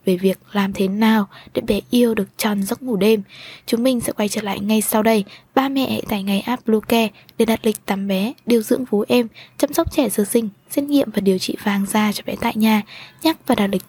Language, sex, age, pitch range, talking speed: Vietnamese, female, 10-29, 200-245 Hz, 250 wpm